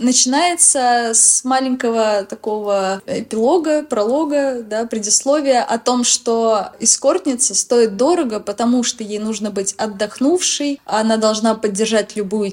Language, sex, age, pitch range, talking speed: Russian, female, 20-39, 205-250 Hz, 115 wpm